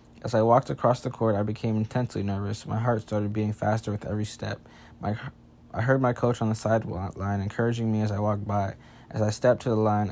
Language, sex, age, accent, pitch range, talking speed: English, male, 20-39, American, 100-115 Hz, 230 wpm